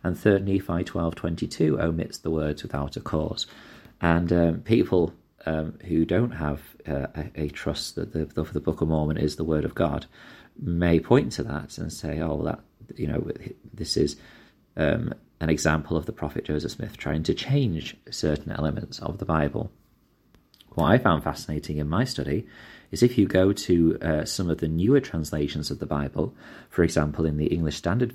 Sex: male